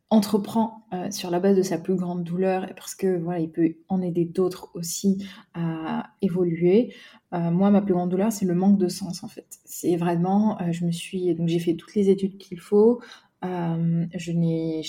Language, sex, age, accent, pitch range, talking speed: French, female, 20-39, French, 175-205 Hz, 200 wpm